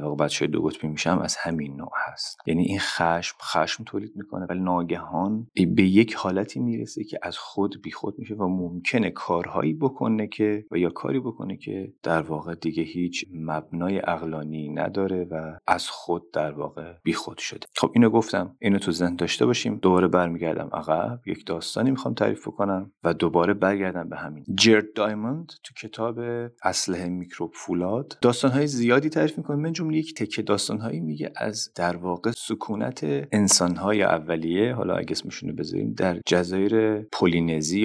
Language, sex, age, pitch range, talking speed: Persian, male, 30-49, 85-105 Hz, 160 wpm